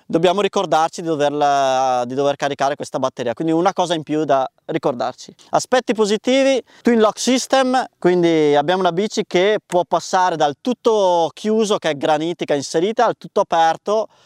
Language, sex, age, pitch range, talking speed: Italian, male, 20-39, 145-180 Hz, 155 wpm